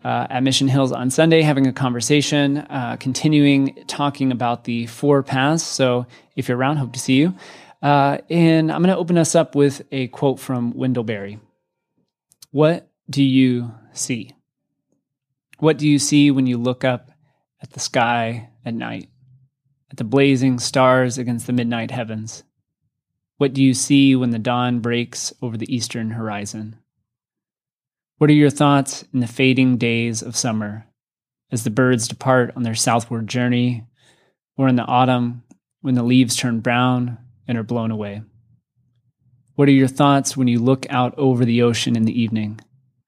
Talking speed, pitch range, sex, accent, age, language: 165 wpm, 120-140 Hz, male, American, 30-49, English